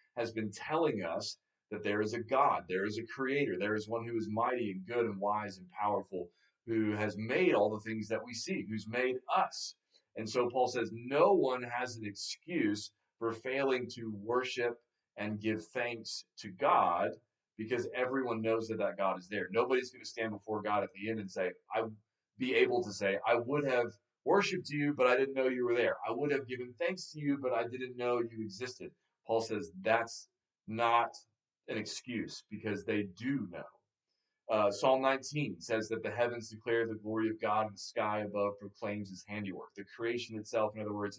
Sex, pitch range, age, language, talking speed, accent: male, 105-125 Hz, 30-49, English, 205 wpm, American